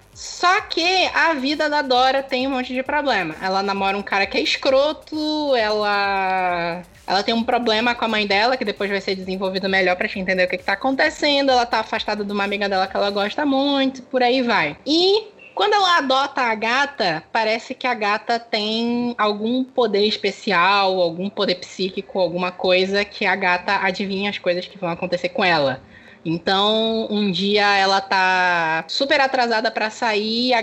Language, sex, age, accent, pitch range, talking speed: Portuguese, female, 10-29, Brazilian, 190-240 Hz, 185 wpm